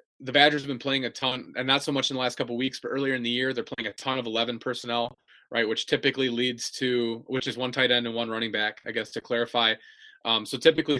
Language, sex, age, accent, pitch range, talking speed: English, male, 20-39, American, 115-135 Hz, 275 wpm